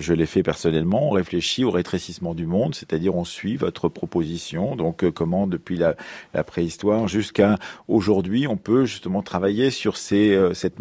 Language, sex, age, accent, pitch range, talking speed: French, male, 40-59, French, 90-105 Hz, 165 wpm